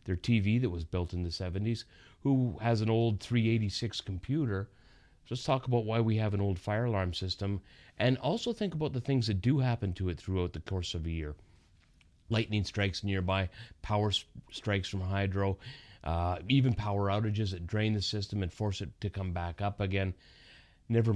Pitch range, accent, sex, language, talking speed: 90-110 Hz, American, male, English, 185 wpm